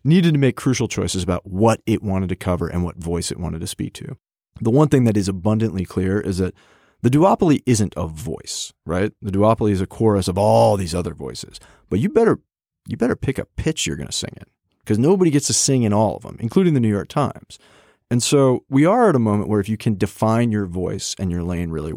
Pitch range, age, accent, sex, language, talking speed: 95-120 Hz, 40-59, American, male, English, 240 wpm